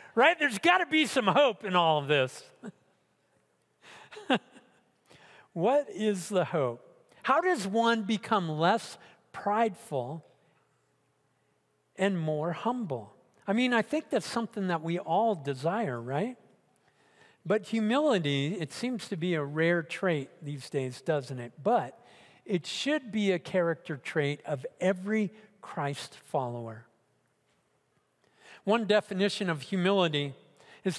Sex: male